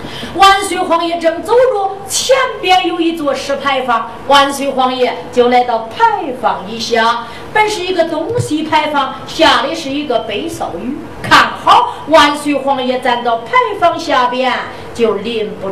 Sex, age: female, 40-59